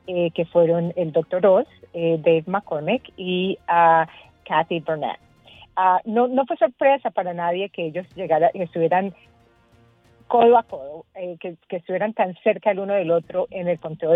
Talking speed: 170 wpm